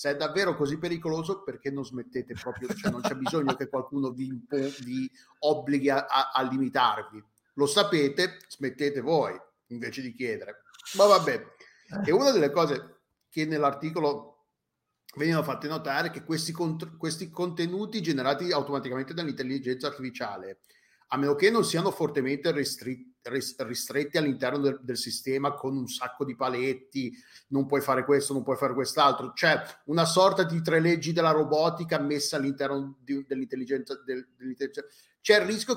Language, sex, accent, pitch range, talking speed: Italian, male, native, 135-165 Hz, 160 wpm